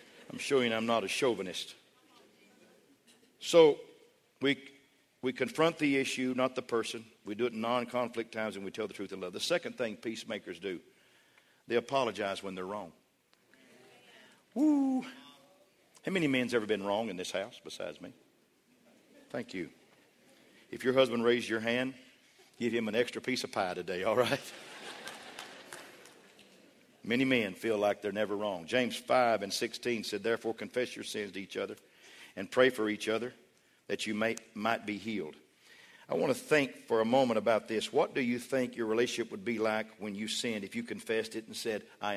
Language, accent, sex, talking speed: English, American, male, 180 wpm